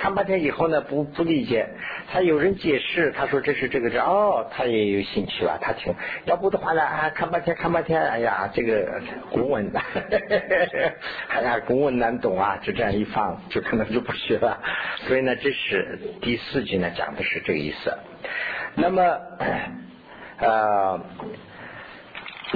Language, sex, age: Chinese, male, 50-69